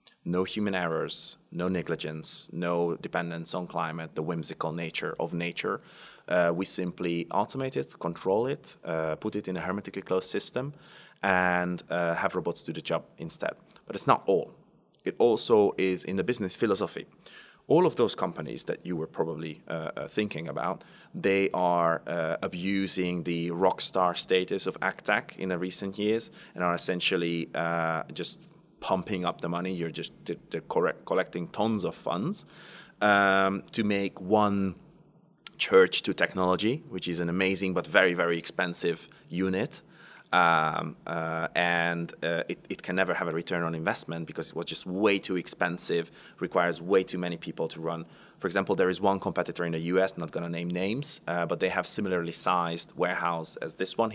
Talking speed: 170 wpm